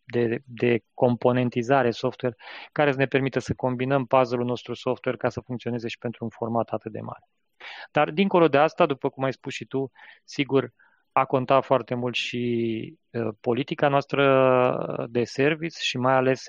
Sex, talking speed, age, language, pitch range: male, 165 wpm, 20-39, Romanian, 115-130 Hz